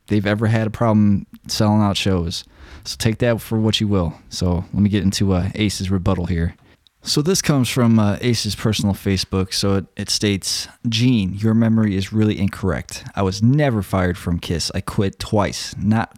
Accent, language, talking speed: American, English, 195 wpm